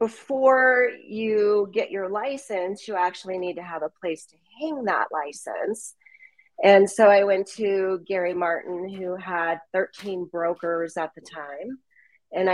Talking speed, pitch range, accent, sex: 150 wpm, 165-205 Hz, American, female